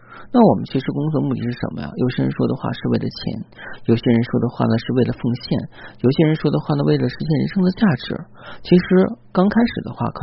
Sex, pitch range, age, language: male, 115-155 Hz, 40-59, Chinese